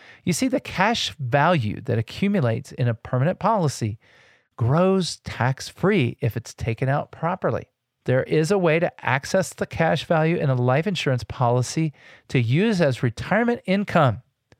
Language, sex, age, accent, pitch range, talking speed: English, male, 40-59, American, 120-155 Hz, 150 wpm